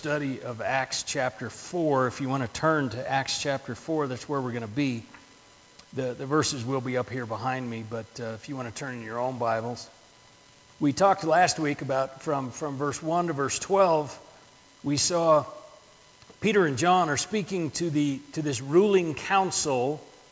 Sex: male